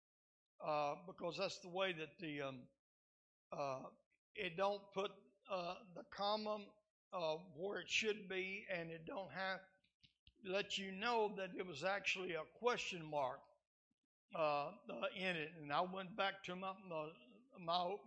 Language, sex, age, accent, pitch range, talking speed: English, male, 60-79, American, 185-220 Hz, 145 wpm